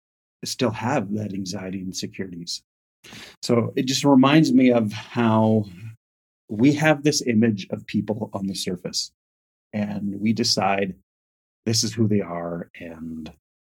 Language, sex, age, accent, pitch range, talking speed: English, male, 30-49, American, 90-110 Hz, 135 wpm